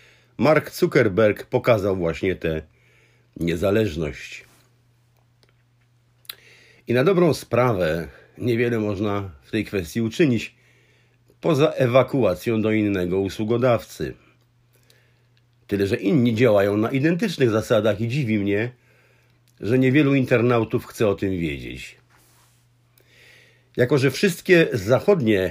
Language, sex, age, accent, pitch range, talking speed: Polish, male, 50-69, native, 110-125 Hz, 100 wpm